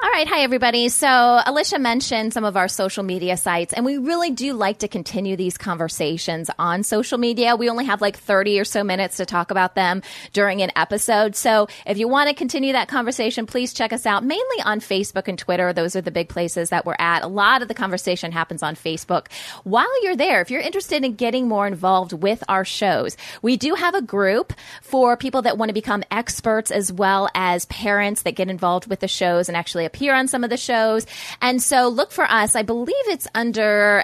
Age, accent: 20-39, American